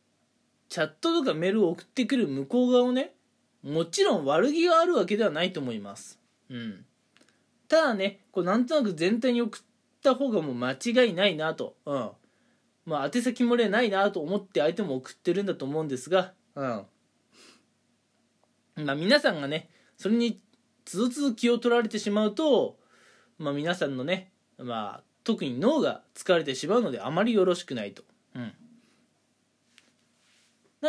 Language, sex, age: Japanese, male, 20-39